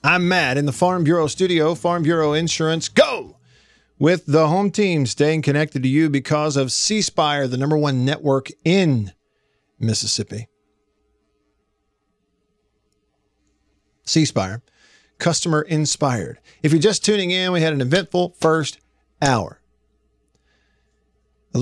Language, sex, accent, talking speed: English, male, American, 120 wpm